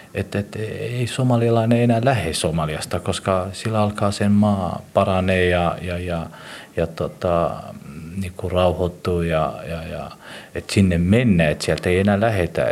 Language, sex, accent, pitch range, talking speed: Finnish, male, native, 85-110 Hz, 140 wpm